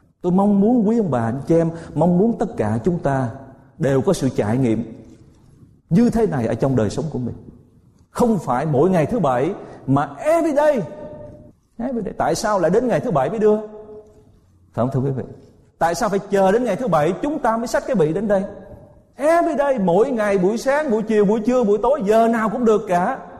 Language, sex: Vietnamese, male